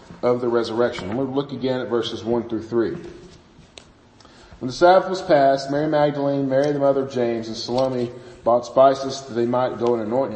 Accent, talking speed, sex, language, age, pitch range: American, 190 wpm, male, English, 40-59, 120-145 Hz